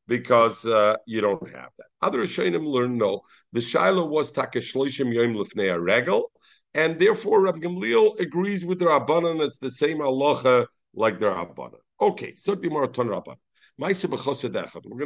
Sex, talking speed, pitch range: male, 145 wpm, 120-170 Hz